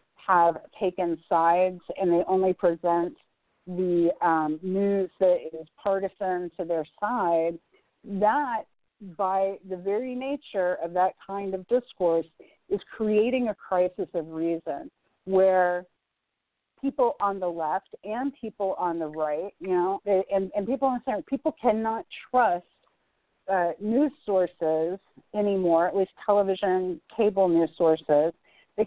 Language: English